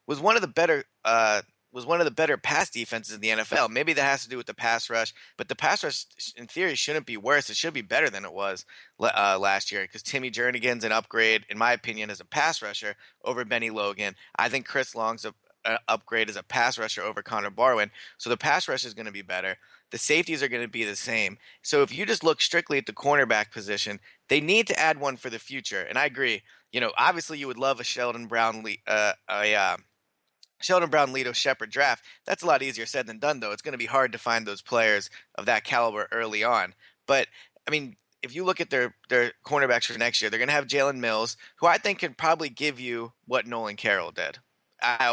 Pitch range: 115-145 Hz